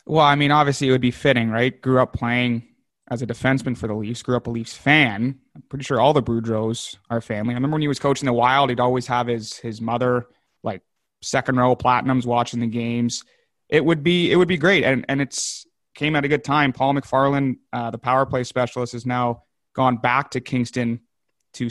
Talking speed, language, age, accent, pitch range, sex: 225 wpm, English, 30-49, American, 120-140 Hz, male